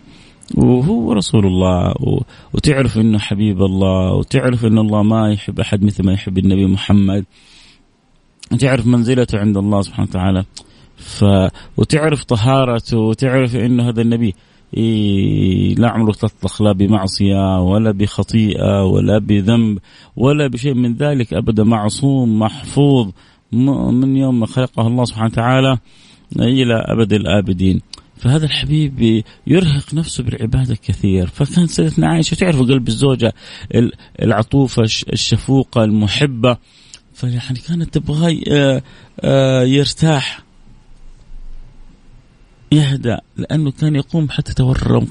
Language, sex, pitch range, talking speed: Arabic, male, 105-135 Hz, 110 wpm